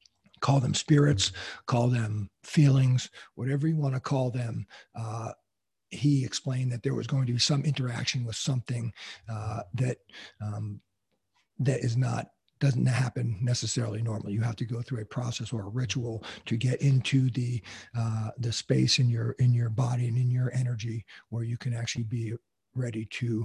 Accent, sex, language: American, male, English